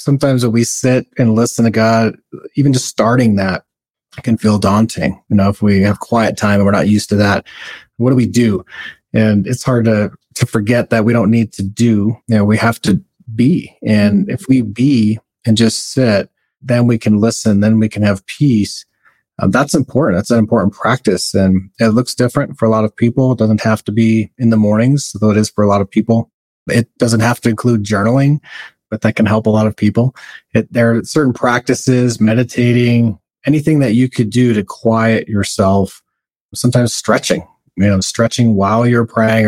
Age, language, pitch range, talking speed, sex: 30-49, English, 105-120 Hz, 205 wpm, male